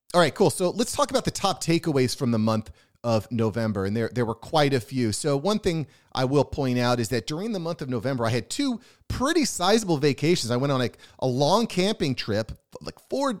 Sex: male